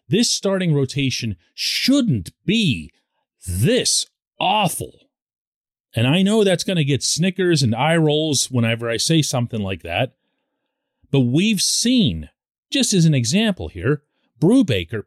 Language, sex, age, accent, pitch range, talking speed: English, male, 40-59, American, 120-195 Hz, 130 wpm